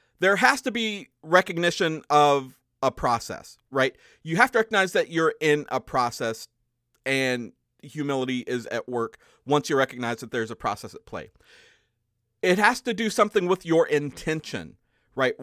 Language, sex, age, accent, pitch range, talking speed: English, male, 40-59, American, 125-195 Hz, 160 wpm